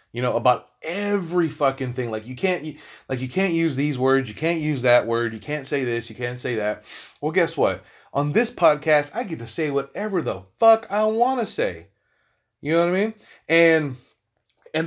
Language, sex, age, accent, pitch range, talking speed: English, male, 30-49, American, 125-170 Hz, 210 wpm